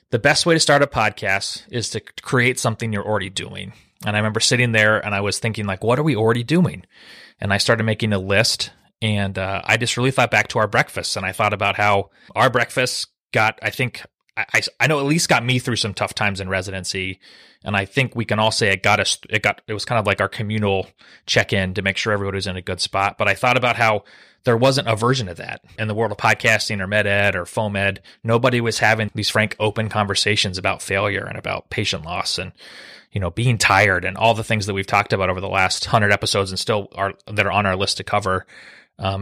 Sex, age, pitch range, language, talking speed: male, 30-49, 100-120 Hz, English, 245 wpm